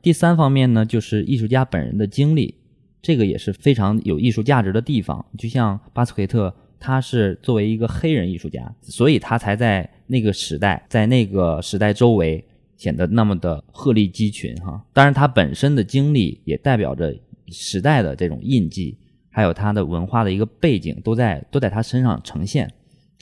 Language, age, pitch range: Chinese, 20-39, 100-130 Hz